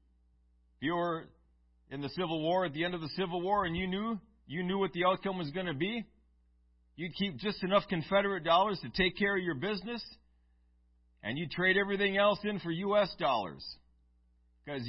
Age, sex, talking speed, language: 40-59, male, 195 wpm, English